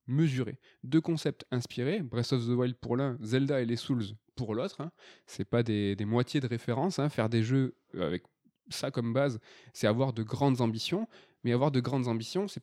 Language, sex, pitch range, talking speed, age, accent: French, male, 120-150 Hz, 205 wpm, 20-39, French